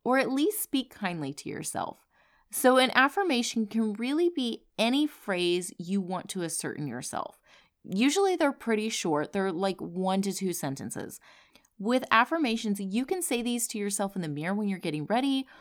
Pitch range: 170-235 Hz